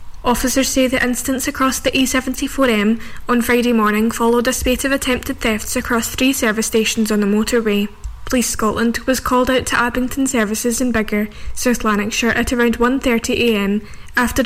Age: 10-29